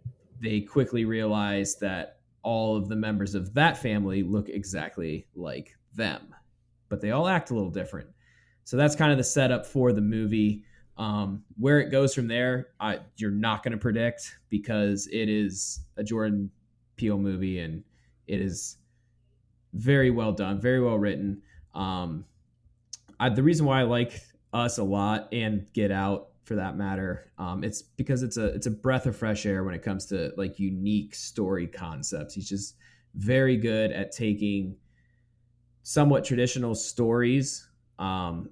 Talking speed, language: 160 wpm, English